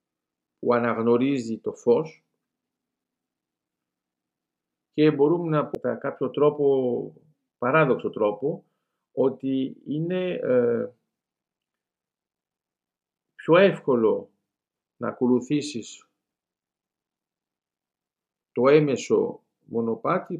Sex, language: male, Greek